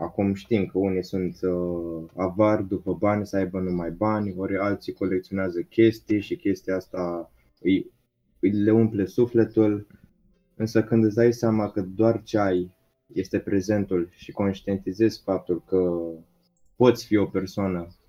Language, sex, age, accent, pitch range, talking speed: Romanian, male, 20-39, native, 90-105 Hz, 145 wpm